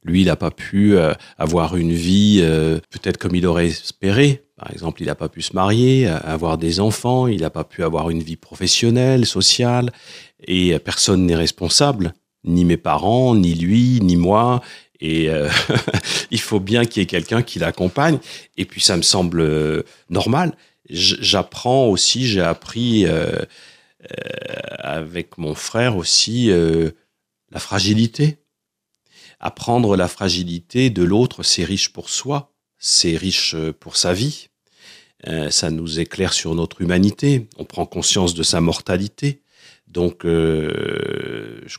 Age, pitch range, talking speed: 40-59, 80-110 Hz, 150 wpm